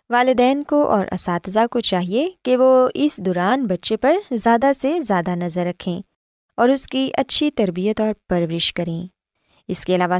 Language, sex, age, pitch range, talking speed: Urdu, female, 20-39, 185-255 Hz, 165 wpm